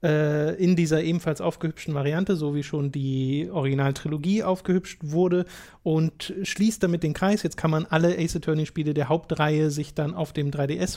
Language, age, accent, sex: German, 30-49, German, male